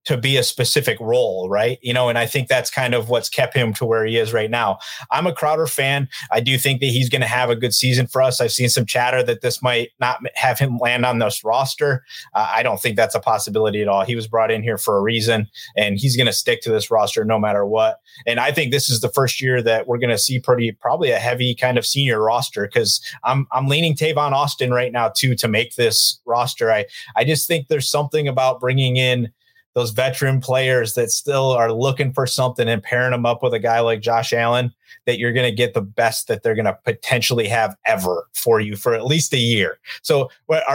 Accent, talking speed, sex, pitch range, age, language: American, 245 wpm, male, 120-140 Hz, 30-49, English